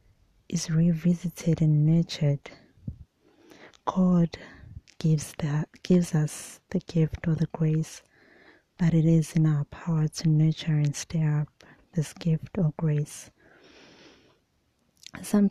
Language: English